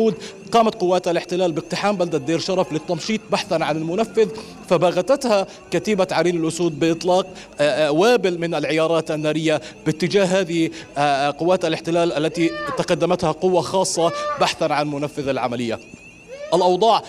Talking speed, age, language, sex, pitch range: 115 wpm, 30-49, Arabic, male, 165-205 Hz